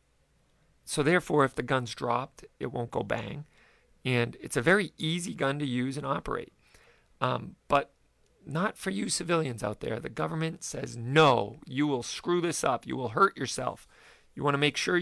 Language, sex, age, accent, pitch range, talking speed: English, male, 40-59, American, 125-160 Hz, 185 wpm